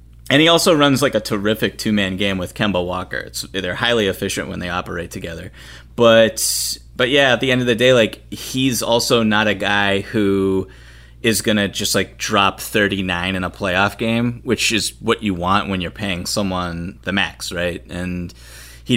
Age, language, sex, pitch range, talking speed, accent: 30-49, English, male, 95-110 Hz, 190 wpm, American